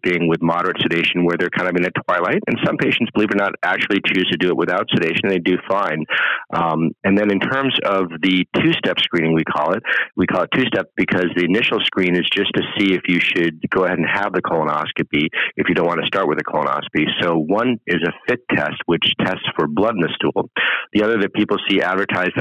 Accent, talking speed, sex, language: American, 240 wpm, male, English